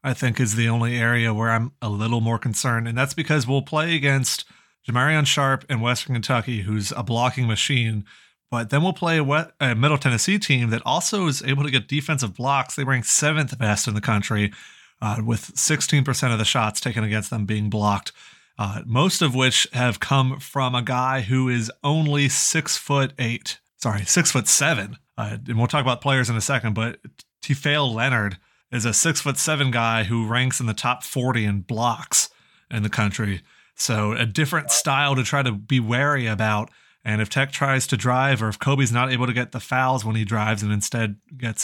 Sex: male